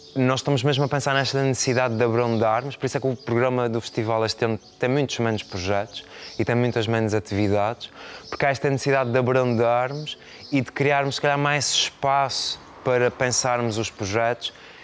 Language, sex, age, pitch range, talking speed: Portuguese, male, 20-39, 110-130 Hz, 180 wpm